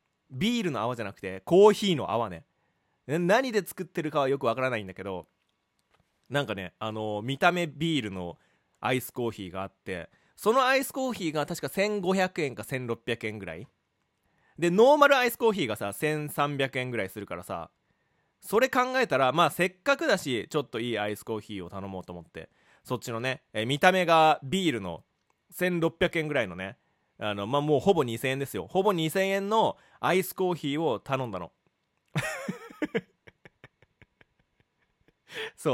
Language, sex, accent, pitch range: Japanese, male, native, 115-185 Hz